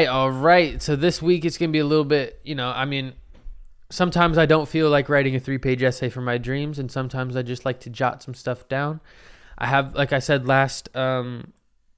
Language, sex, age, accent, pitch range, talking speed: English, male, 20-39, American, 110-140 Hz, 220 wpm